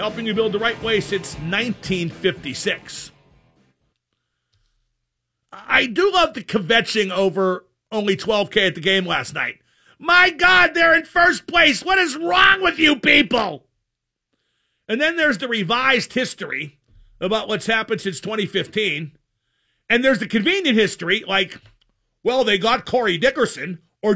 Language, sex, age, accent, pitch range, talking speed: English, male, 50-69, American, 200-295 Hz, 140 wpm